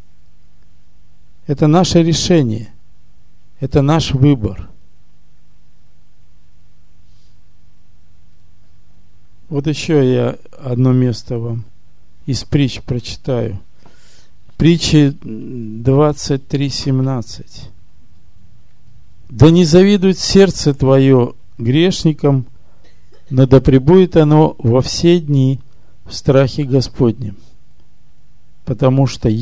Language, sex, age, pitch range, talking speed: Russian, male, 50-69, 85-140 Hz, 70 wpm